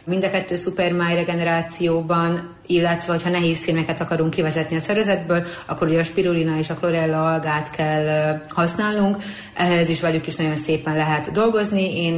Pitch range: 160-180 Hz